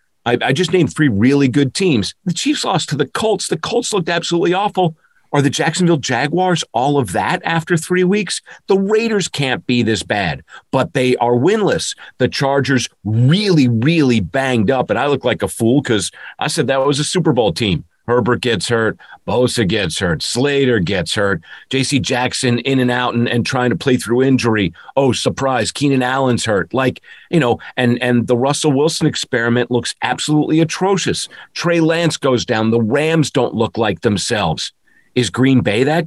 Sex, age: male, 40-59